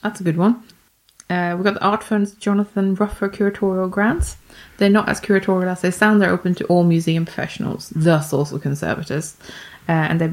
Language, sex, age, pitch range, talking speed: English, female, 20-39, 175-215 Hz, 190 wpm